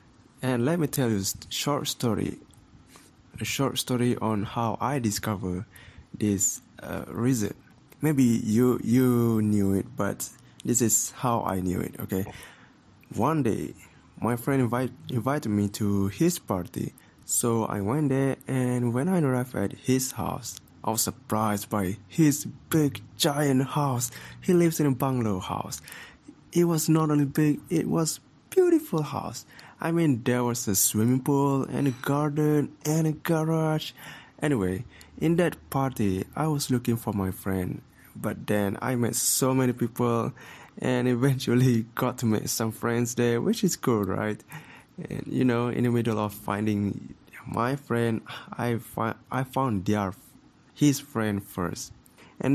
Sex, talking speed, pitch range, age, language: male, 155 wpm, 105-140 Hz, 20-39, English